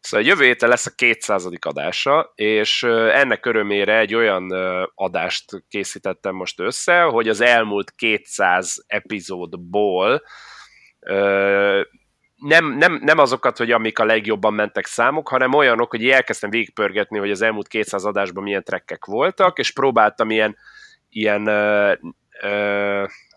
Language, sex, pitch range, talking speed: Hungarian, male, 105-120 Hz, 130 wpm